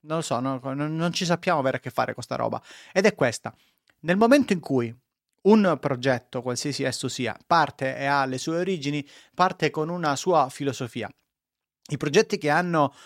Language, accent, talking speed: Italian, native, 190 wpm